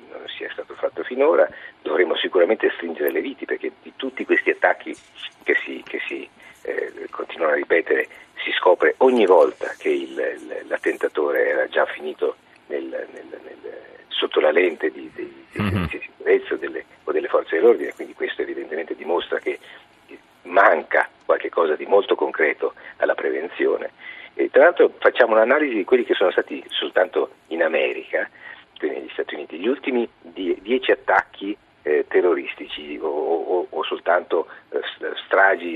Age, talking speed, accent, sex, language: 50-69, 155 wpm, native, male, Italian